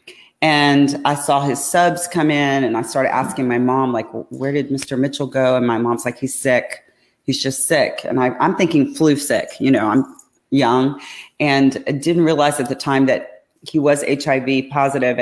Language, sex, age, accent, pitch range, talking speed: English, female, 40-59, American, 135-155 Hz, 200 wpm